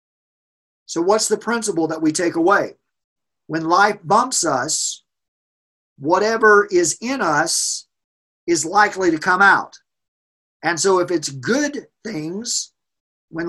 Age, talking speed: 40-59, 125 wpm